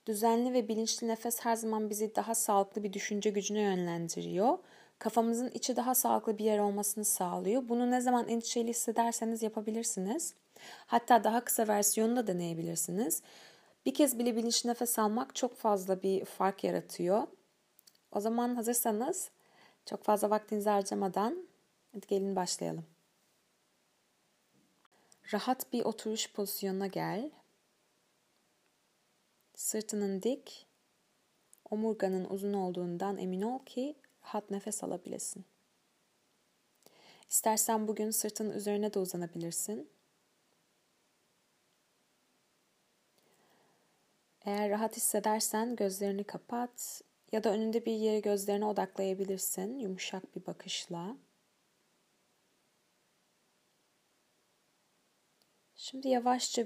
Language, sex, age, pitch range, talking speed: Turkish, female, 30-49, 200-235 Hz, 95 wpm